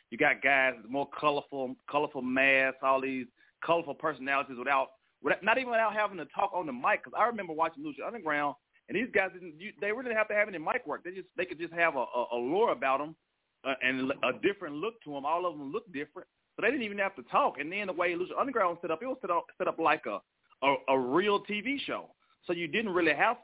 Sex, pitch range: male, 135-190 Hz